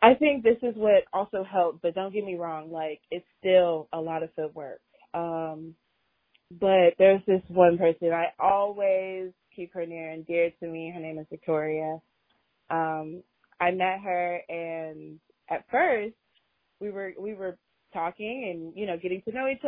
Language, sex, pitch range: English, female, 165-210 Hz